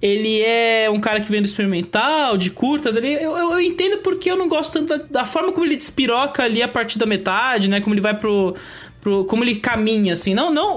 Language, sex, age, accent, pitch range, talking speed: English, male, 20-39, Brazilian, 190-250 Hz, 240 wpm